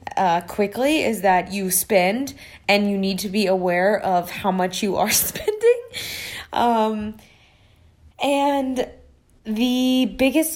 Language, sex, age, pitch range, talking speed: English, female, 20-39, 185-220 Hz, 125 wpm